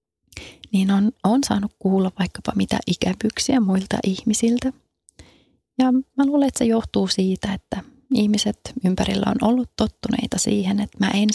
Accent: native